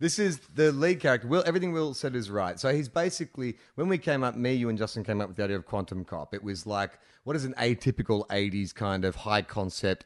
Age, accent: 30-49, Australian